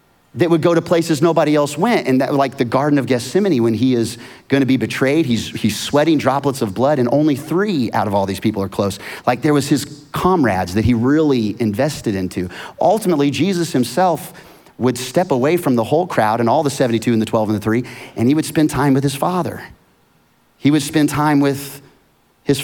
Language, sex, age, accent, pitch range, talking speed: English, male, 30-49, American, 110-150 Hz, 215 wpm